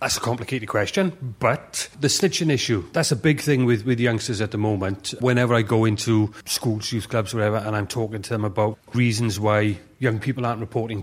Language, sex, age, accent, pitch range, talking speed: English, male, 30-49, British, 110-125 Hz, 205 wpm